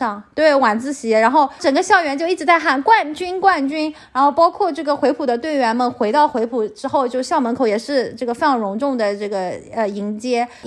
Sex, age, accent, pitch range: female, 30-49, native, 230-310 Hz